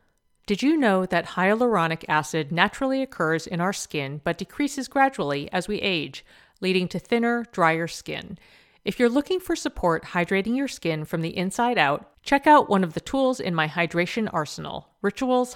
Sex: female